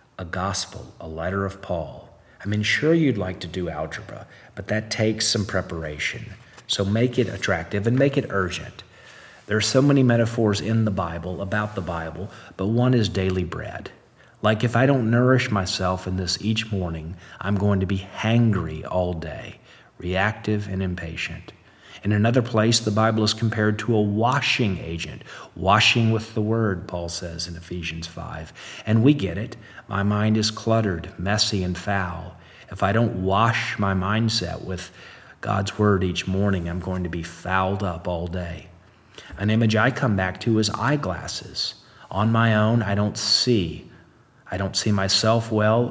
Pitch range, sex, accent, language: 90-110 Hz, male, American, English